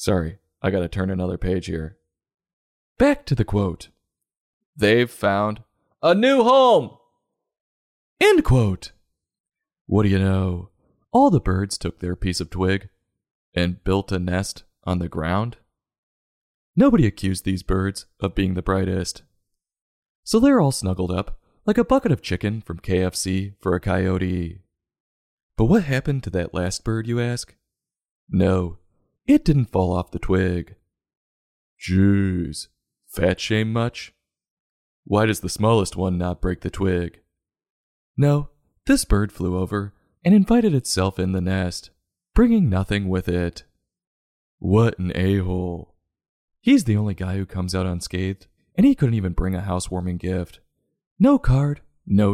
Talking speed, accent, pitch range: 145 wpm, American, 90-110 Hz